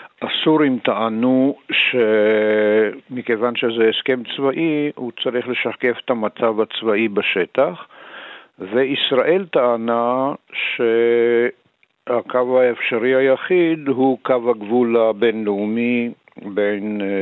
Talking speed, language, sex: 80 wpm, Hebrew, male